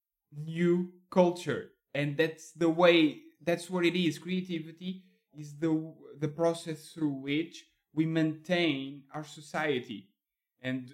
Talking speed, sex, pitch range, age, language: 120 wpm, male, 135-165 Hz, 20-39, English